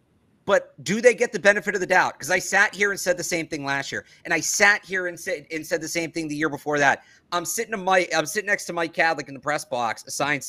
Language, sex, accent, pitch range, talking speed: English, male, American, 160-210 Hz, 285 wpm